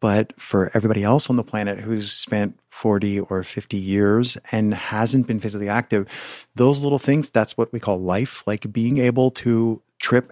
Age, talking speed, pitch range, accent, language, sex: 50-69, 180 wpm, 100-125 Hz, American, English, male